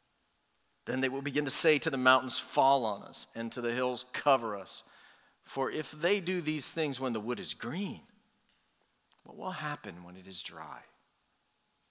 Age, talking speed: 50-69, 180 wpm